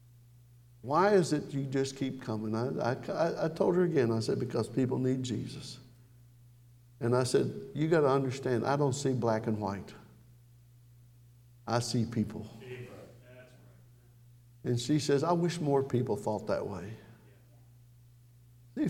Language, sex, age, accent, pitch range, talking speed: English, male, 60-79, American, 120-140 Hz, 145 wpm